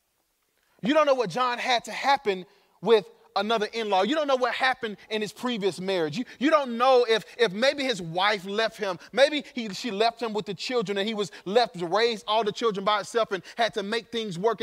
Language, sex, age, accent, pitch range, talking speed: English, male, 30-49, American, 165-250 Hz, 230 wpm